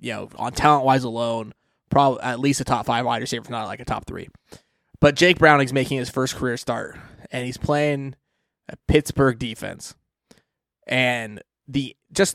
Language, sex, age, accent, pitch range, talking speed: English, male, 20-39, American, 125-145 Hz, 175 wpm